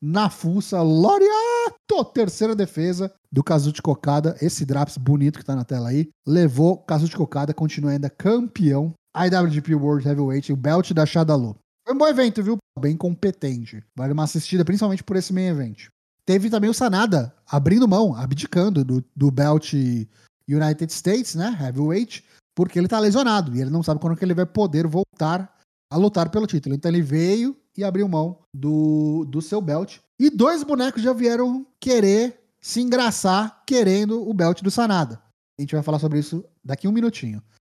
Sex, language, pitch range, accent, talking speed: male, Portuguese, 145-210 Hz, Brazilian, 175 wpm